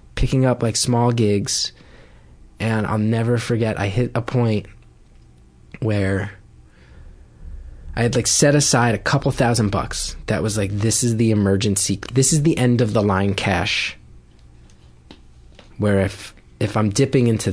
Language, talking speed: English, 150 wpm